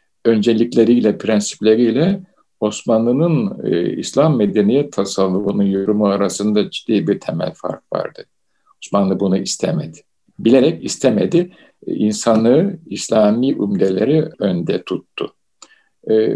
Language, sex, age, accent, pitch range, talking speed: Turkish, male, 50-69, native, 105-160 Hz, 90 wpm